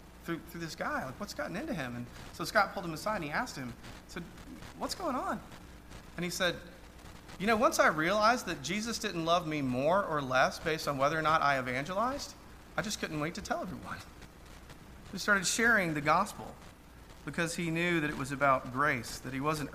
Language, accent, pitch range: English, American, 130-170 Hz